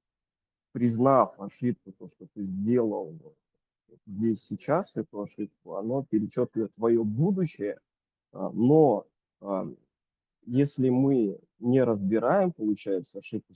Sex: male